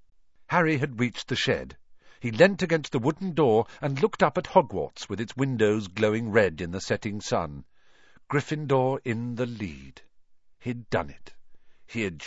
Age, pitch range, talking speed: 50-69, 95-150 Hz, 165 wpm